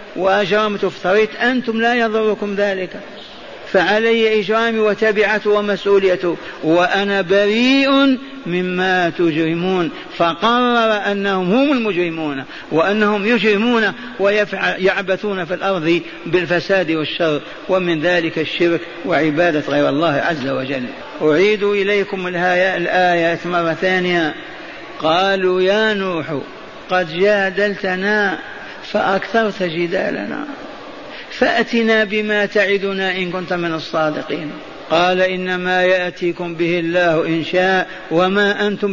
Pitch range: 170-210 Hz